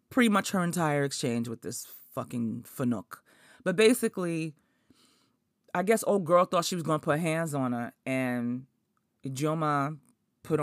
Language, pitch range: English, 145-200 Hz